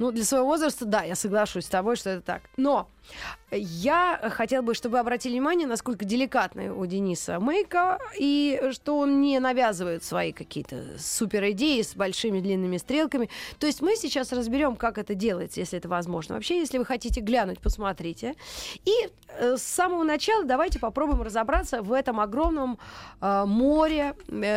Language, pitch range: Russian, 205-285 Hz